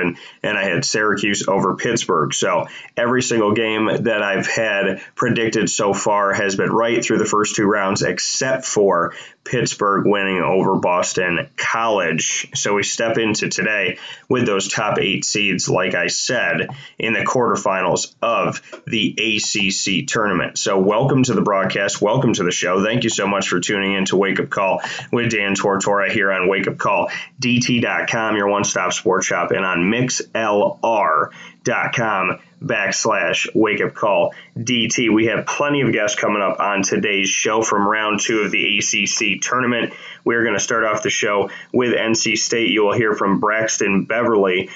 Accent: American